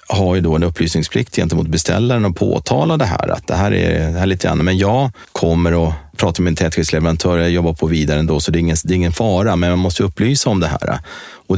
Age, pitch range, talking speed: 30-49, 80-95 Hz, 245 wpm